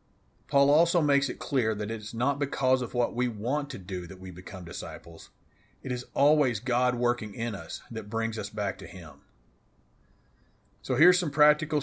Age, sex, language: 40-59, male, English